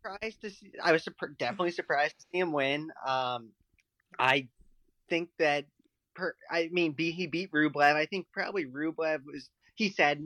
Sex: male